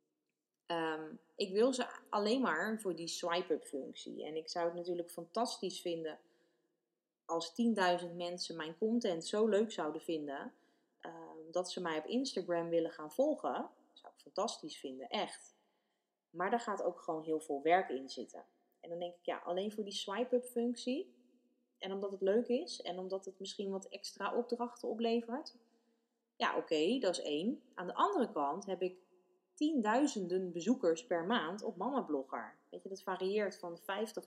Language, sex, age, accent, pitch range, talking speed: Dutch, female, 30-49, Dutch, 170-230 Hz, 175 wpm